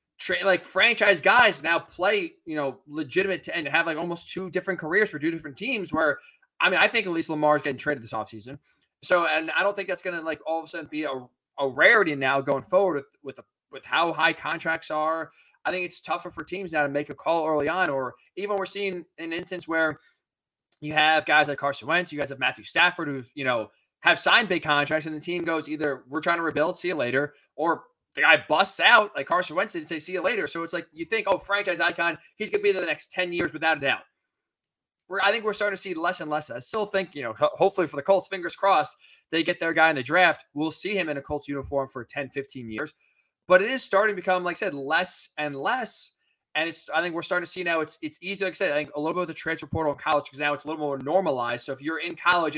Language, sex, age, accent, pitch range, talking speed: English, male, 20-39, American, 150-185 Hz, 265 wpm